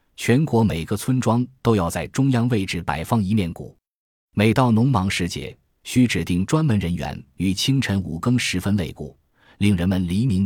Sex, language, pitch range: male, Chinese, 85-115 Hz